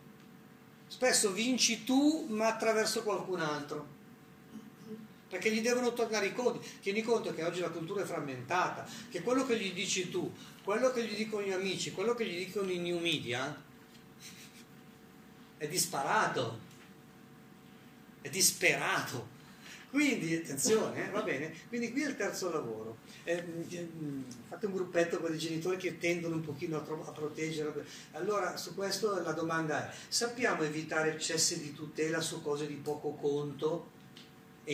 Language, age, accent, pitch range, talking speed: Italian, 40-59, native, 160-225 Hz, 145 wpm